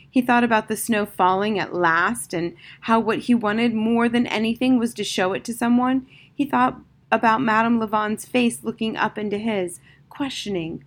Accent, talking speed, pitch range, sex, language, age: American, 180 wpm, 170-230 Hz, female, English, 30-49